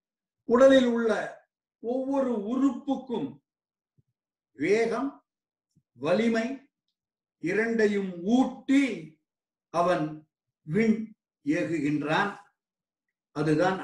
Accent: native